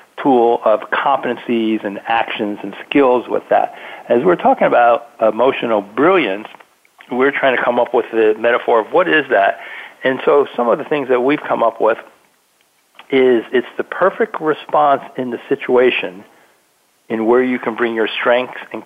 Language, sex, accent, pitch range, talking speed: English, male, American, 110-135 Hz, 170 wpm